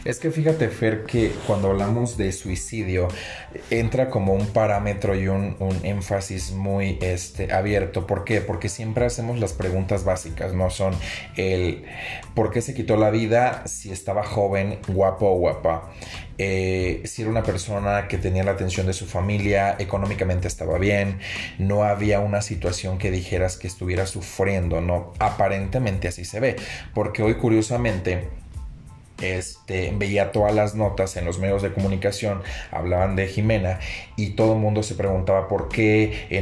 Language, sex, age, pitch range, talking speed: Spanish, male, 30-49, 90-105 Hz, 155 wpm